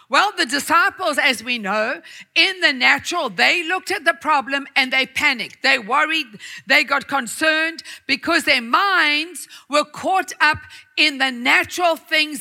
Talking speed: 155 wpm